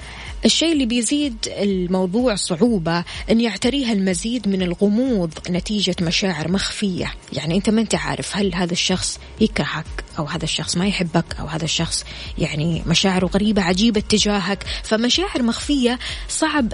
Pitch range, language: 180-235 Hz, Arabic